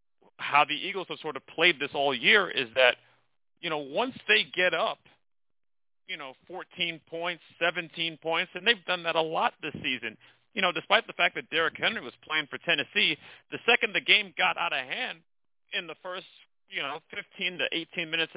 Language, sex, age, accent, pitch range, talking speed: English, male, 40-59, American, 140-175 Hz, 200 wpm